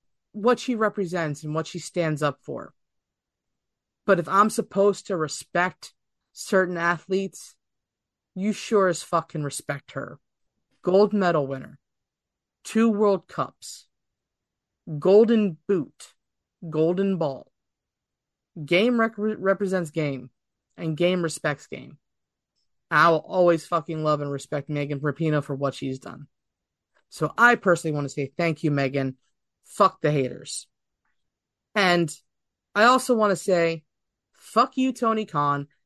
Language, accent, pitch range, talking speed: English, American, 145-190 Hz, 130 wpm